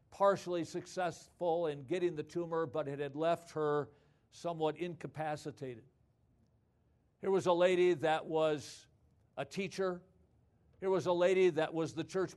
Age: 50-69